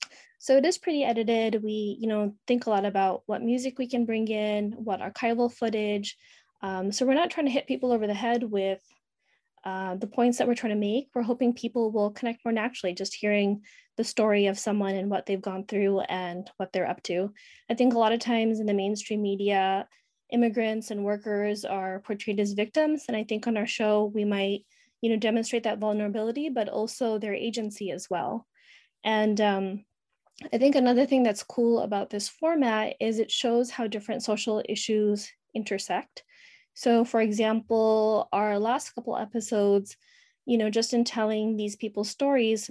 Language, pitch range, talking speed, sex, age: English, 205-235 Hz, 190 wpm, female, 20-39